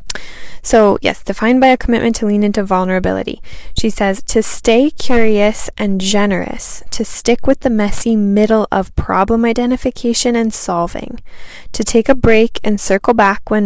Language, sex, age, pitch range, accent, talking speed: English, female, 10-29, 190-225 Hz, American, 160 wpm